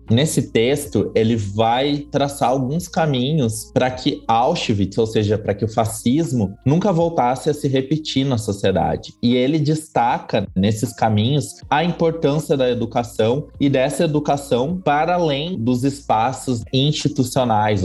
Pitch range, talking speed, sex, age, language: 105-130 Hz, 135 wpm, male, 20-39, Portuguese